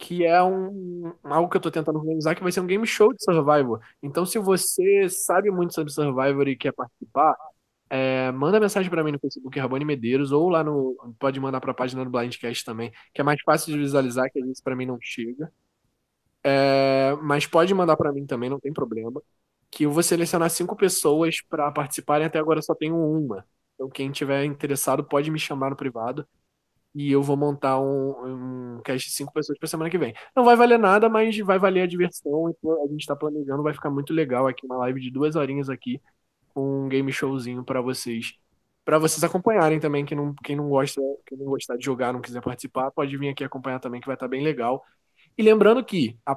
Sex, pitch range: male, 135-165 Hz